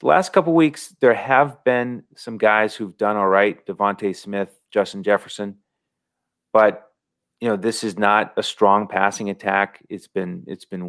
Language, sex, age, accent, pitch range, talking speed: English, male, 30-49, American, 100-115 Hz, 175 wpm